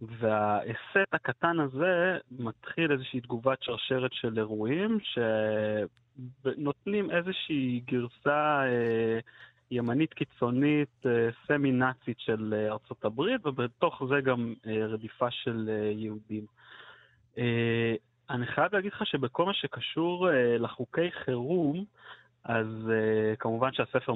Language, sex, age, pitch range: Hebrew, male, 30-49, 110-135 Hz